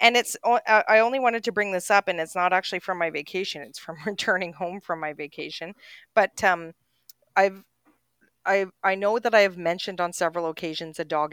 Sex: female